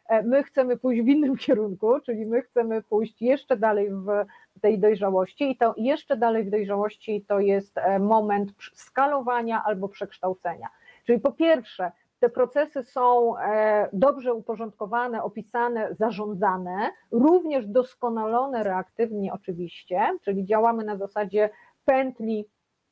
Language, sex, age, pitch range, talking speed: Polish, female, 30-49, 205-255 Hz, 120 wpm